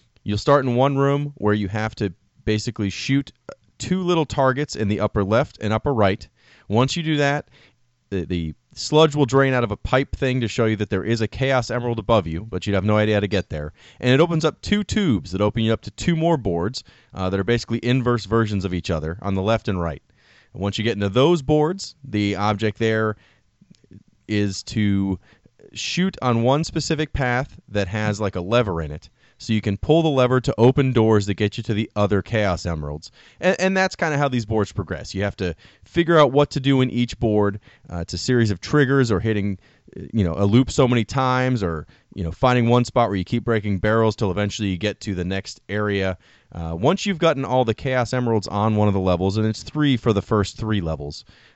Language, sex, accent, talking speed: English, male, American, 230 wpm